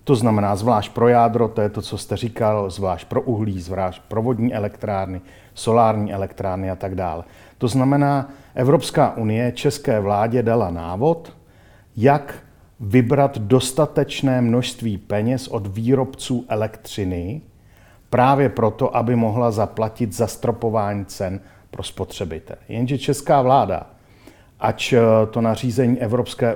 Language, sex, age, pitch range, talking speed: Czech, male, 50-69, 105-130 Hz, 125 wpm